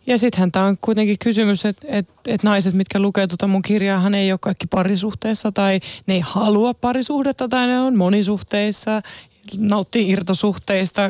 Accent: native